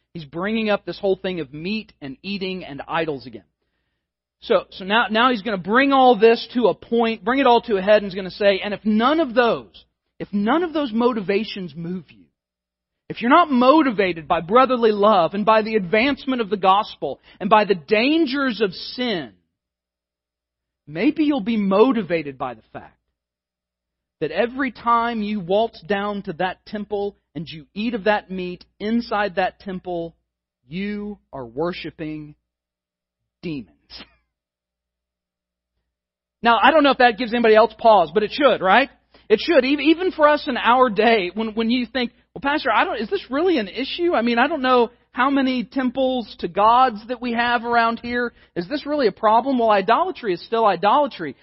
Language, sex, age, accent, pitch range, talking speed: English, male, 40-59, American, 155-240 Hz, 180 wpm